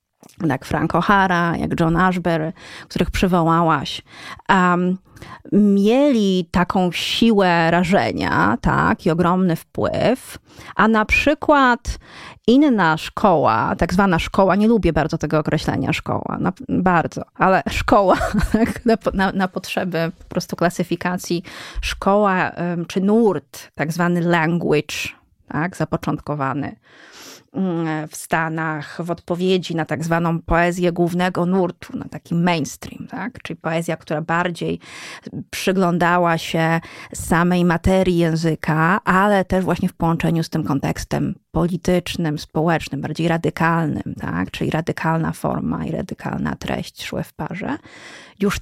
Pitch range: 165-190 Hz